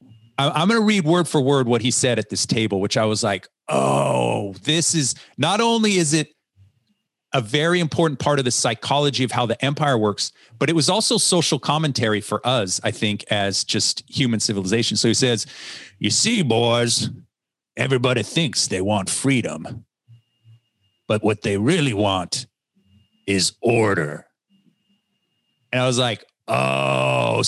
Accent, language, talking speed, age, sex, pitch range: American, English, 160 wpm, 40-59, male, 115-155 Hz